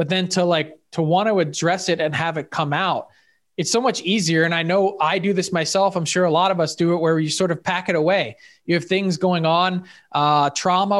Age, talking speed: 20-39, 255 wpm